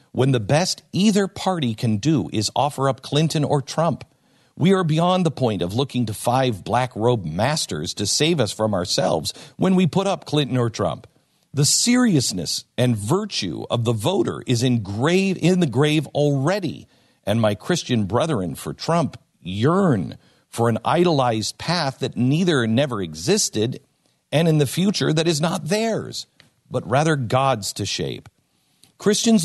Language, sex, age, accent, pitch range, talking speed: English, male, 50-69, American, 115-165 Hz, 160 wpm